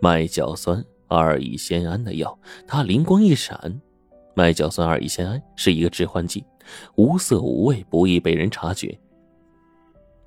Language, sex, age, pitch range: Chinese, male, 20-39, 85-110 Hz